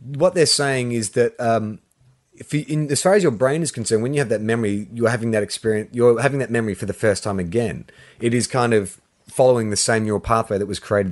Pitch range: 110-135 Hz